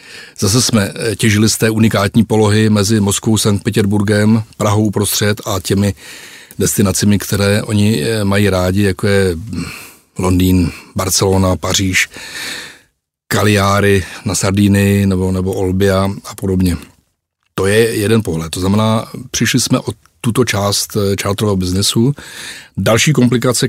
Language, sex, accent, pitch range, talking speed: Czech, male, native, 100-110 Hz, 120 wpm